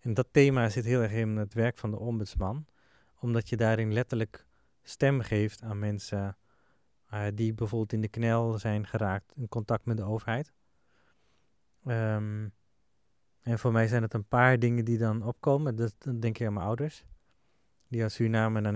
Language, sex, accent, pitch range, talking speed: Dutch, male, Dutch, 110-120 Hz, 175 wpm